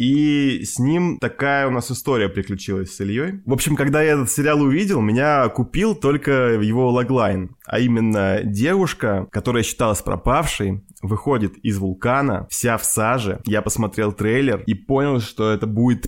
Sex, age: male, 20-39